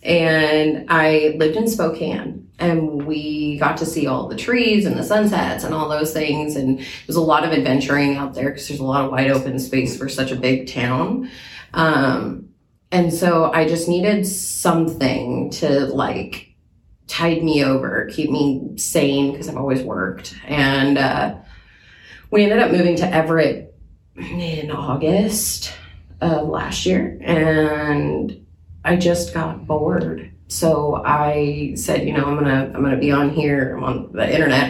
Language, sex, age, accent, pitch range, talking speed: English, female, 30-49, American, 135-165 Hz, 165 wpm